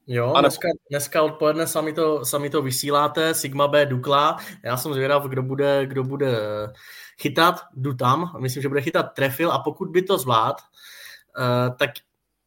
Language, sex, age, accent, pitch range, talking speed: Czech, male, 20-39, native, 125-145 Hz, 160 wpm